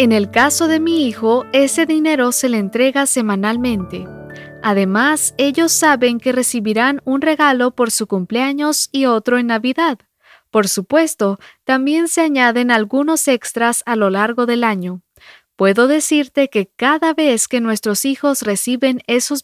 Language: English